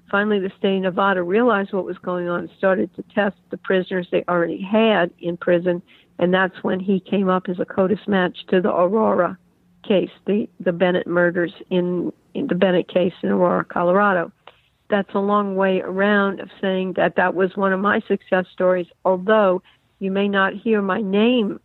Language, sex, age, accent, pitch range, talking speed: English, female, 60-79, American, 180-200 Hz, 190 wpm